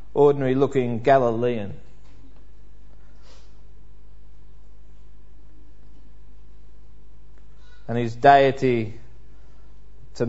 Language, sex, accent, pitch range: English, male, Australian, 120-150 Hz